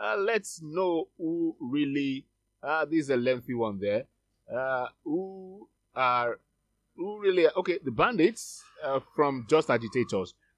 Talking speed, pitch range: 140 wpm, 115-170 Hz